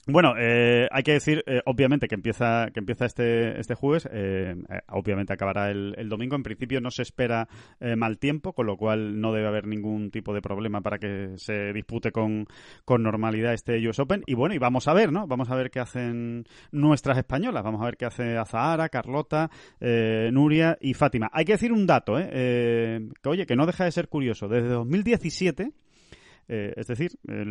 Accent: Spanish